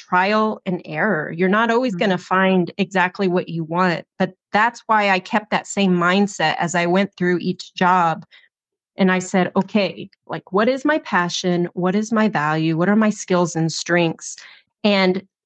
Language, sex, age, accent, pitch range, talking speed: English, female, 30-49, American, 175-210 Hz, 185 wpm